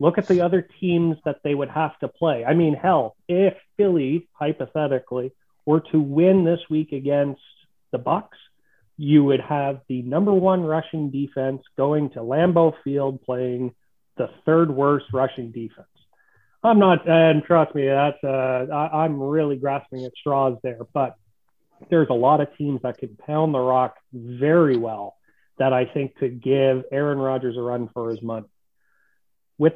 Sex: male